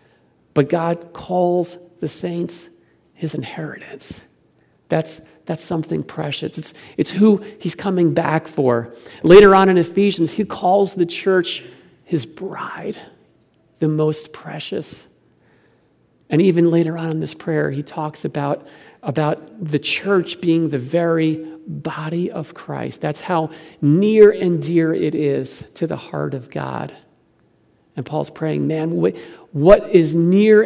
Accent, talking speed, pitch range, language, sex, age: American, 135 wpm, 150-180 Hz, English, male, 40-59